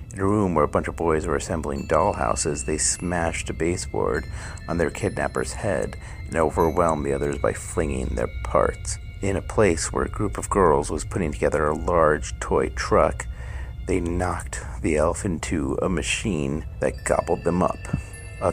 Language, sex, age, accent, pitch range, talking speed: English, male, 50-69, American, 80-110 Hz, 175 wpm